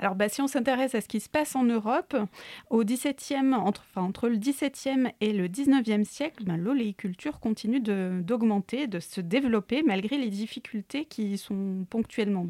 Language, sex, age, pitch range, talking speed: French, female, 20-39, 210-275 Hz, 180 wpm